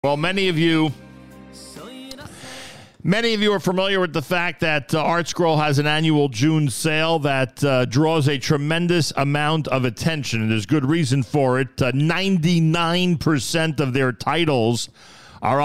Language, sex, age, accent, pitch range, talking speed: English, male, 40-59, American, 115-155 Hz, 155 wpm